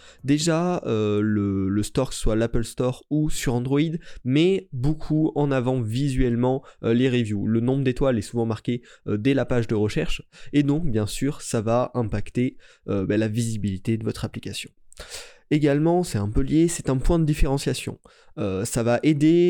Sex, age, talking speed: male, 20-39, 180 wpm